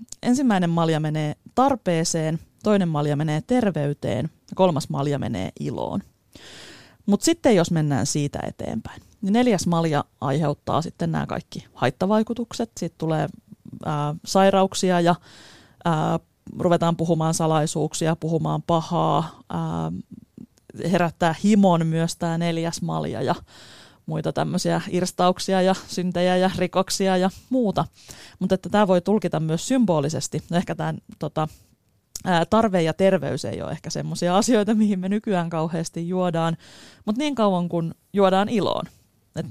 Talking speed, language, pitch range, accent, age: 130 wpm, Finnish, 155-190 Hz, native, 30-49